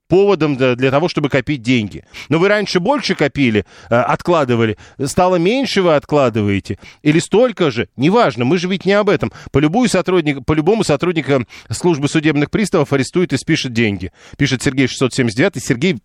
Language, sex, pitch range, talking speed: Russian, male, 125-175 Hz, 155 wpm